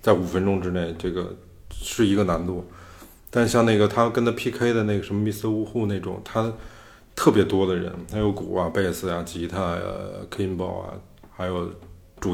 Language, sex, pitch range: Chinese, male, 90-105 Hz